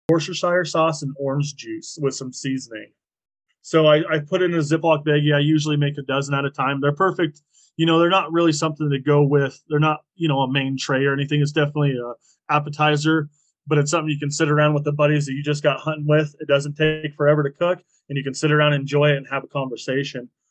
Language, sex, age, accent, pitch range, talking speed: English, male, 20-39, American, 140-160 Hz, 235 wpm